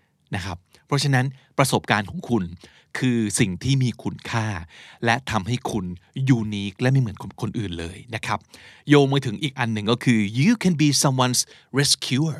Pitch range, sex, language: 110-150 Hz, male, Thai